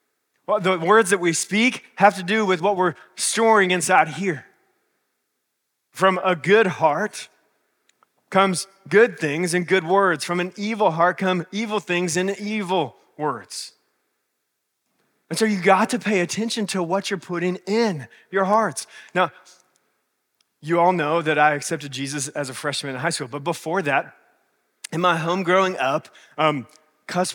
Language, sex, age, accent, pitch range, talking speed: English, male, 30-49, American, 170-210 Hz, 155 wpm